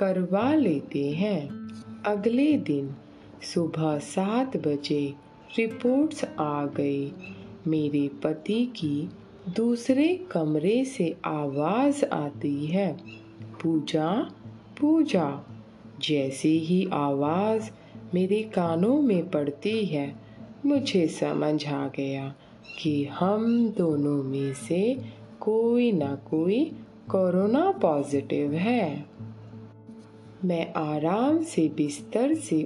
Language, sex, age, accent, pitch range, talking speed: Hindi, female, 20-39, native, 140-195 Hz, 90 wpm